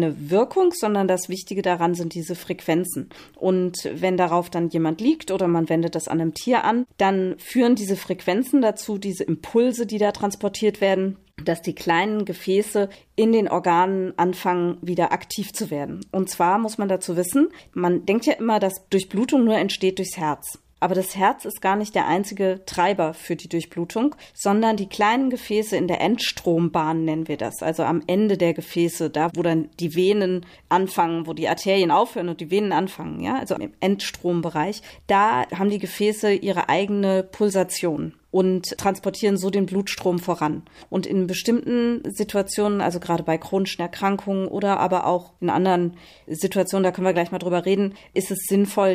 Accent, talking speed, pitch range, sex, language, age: German, 175 wpm, 170-195 Hz, female, German, 30-49